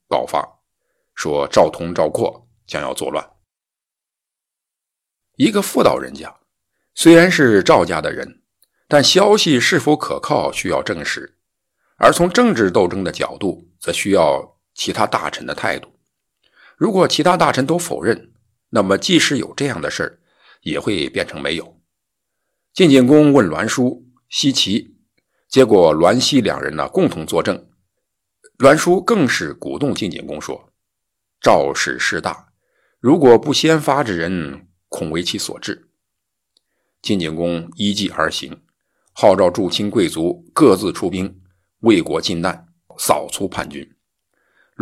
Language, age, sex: Chinese, 50-69, male